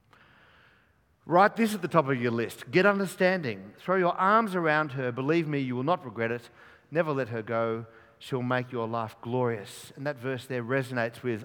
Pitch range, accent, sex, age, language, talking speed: 115-170 Hz, Australian, male, 50-69, English, 195 wpm